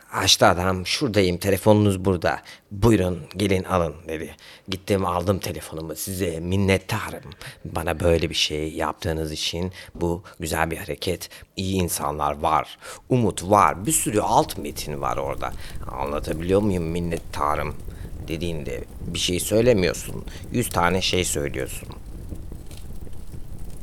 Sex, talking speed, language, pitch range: male, 115 wpm, Turkish, 80-95 Hz